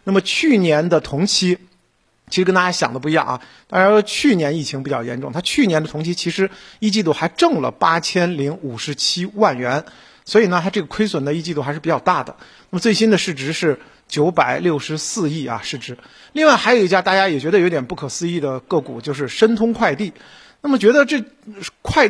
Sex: male